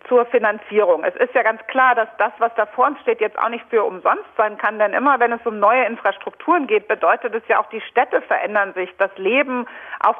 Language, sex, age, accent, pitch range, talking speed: German, female, 50-69, German, 210-260 Hz, 235 wpm